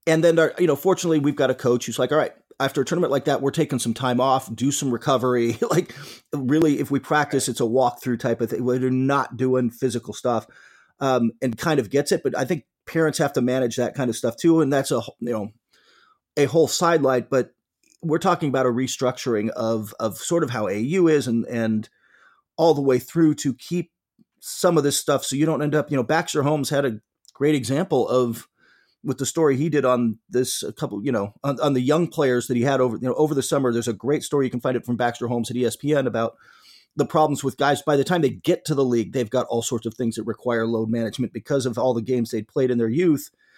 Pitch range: 125-155 Hz